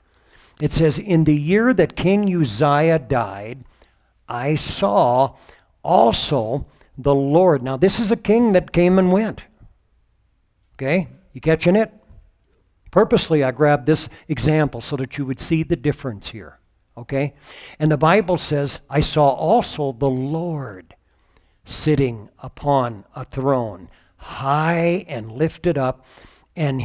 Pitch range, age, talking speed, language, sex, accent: 120-155 Hz, 60-79, 130 wpm, English, male, American